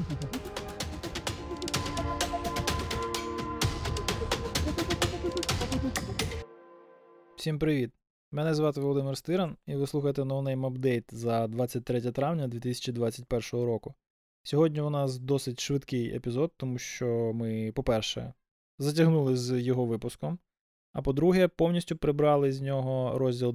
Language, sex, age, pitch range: Ukrainian, male, 20-39, 125-150 Hz